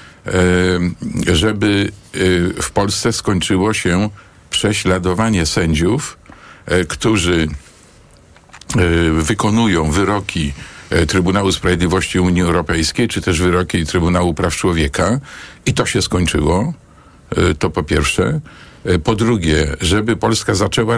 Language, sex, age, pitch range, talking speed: Polish, male, 50-69, 85-110 Hz, 90 wpm